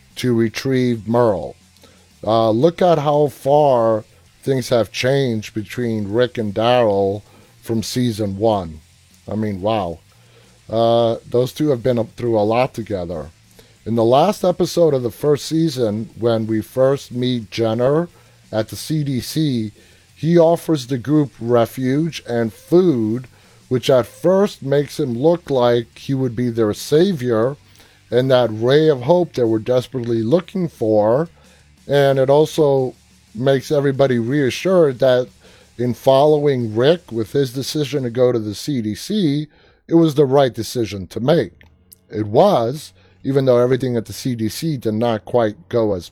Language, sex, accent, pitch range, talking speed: English, male, American, 110-145 Hz, 145 wpm